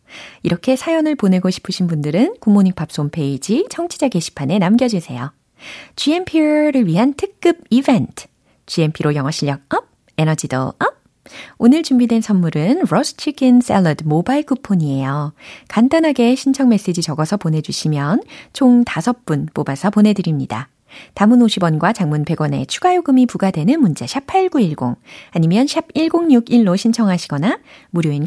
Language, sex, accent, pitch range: Korean, female, native, 155-260 Hz